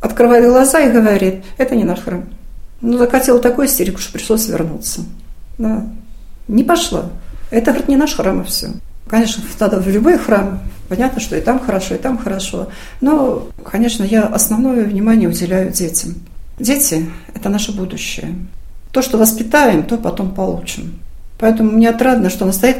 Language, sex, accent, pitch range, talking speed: Russian, female, native, 190-235 Hz, 165 wpm